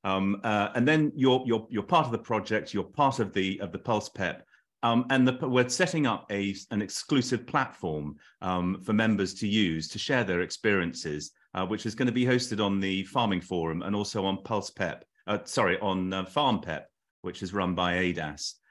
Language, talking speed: English, 210 wpm